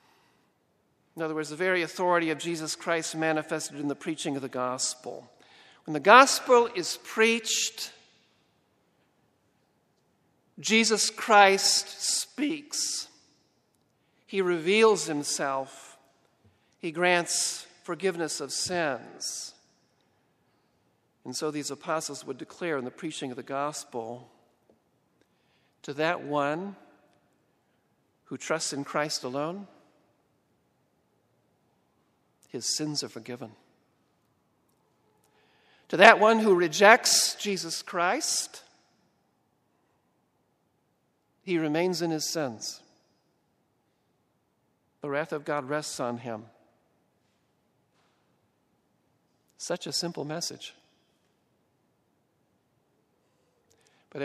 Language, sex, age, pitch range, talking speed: English, male, 50-69, 140-180 Hz, 90 wpm